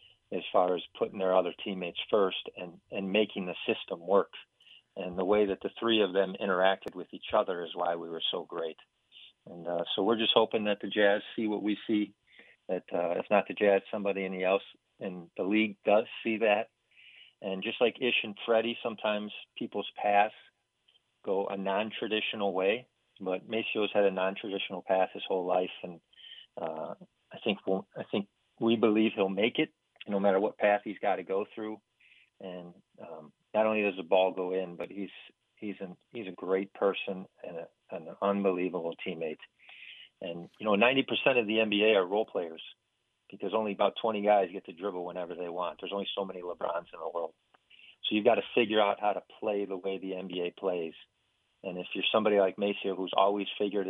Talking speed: 200 wpm